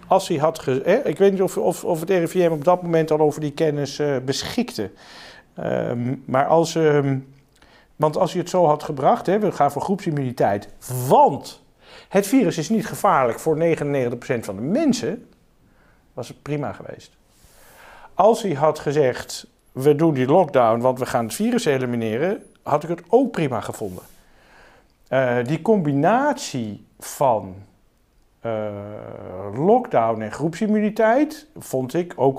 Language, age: Dutch, 50-69